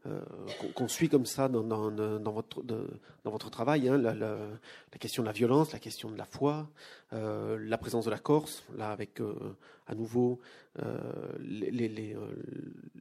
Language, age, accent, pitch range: French, 40-59, French, 110-130 Hz